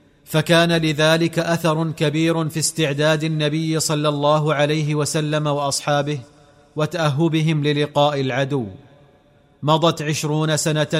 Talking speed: 100 wpm